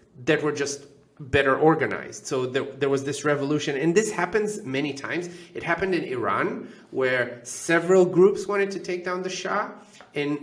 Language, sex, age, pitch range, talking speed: English, male, 30-49, 135-190 Hz, 175 wpm